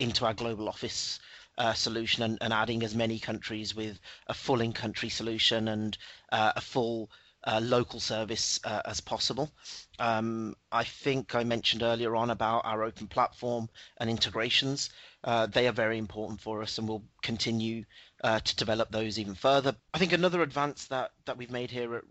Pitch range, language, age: 110-125 Hz, English, 40-59